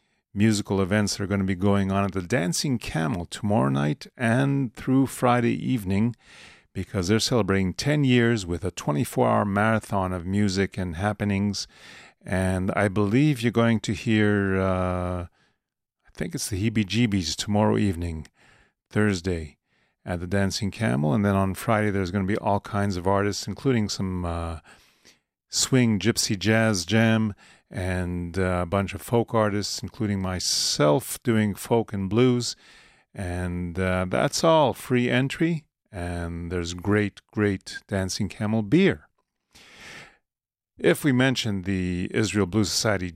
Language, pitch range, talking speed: English, 95-110 Hz, 140 wpm